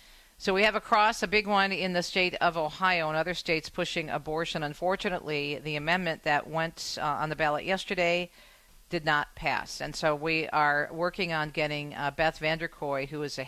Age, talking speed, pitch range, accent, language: 50-69, 195 wpm, 140-165 Hz, American, English